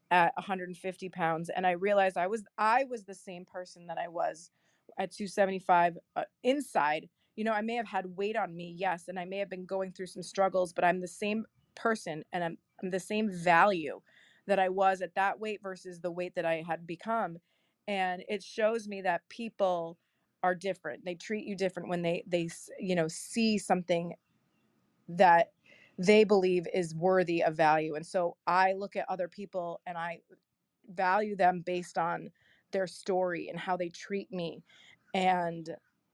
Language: English